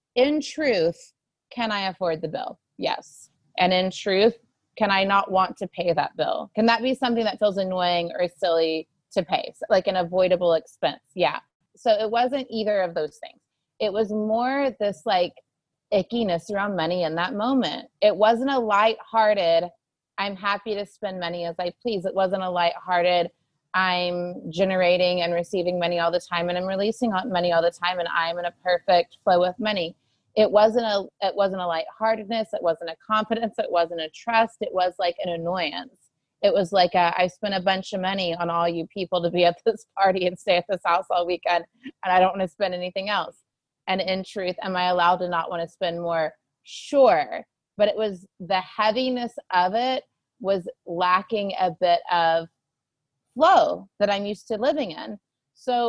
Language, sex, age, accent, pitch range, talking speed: English, female, 30-49, American, 175-215 Hz, 190 wpm